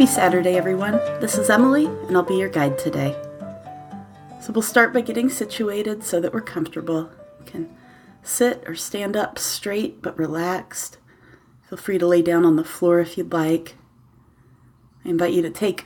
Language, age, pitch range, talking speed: English, 30-49, 140-195 Hz, 180 wpm